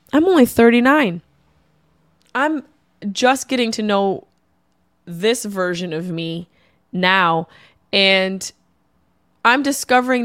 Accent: American